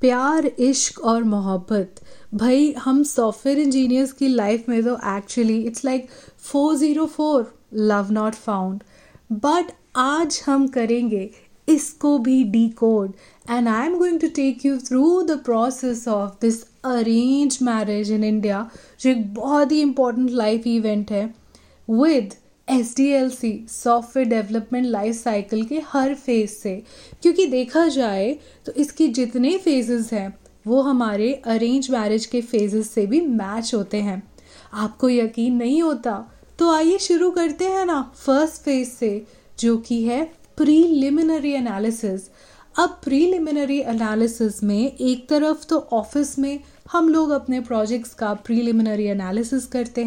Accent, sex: native, female